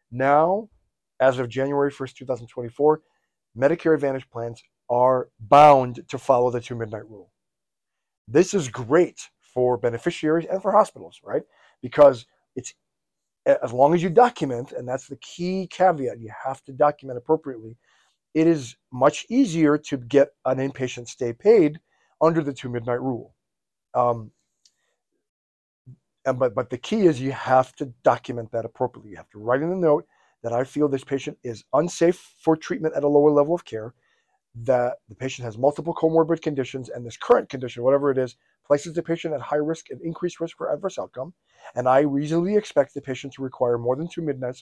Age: 40-59